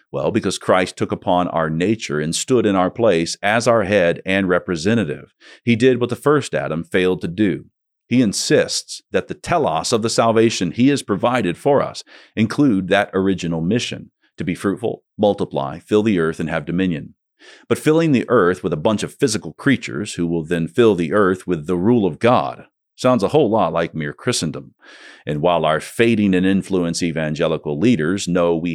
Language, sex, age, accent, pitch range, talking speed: English, male, 40-59, American, 85-115 Hz, 190 wpm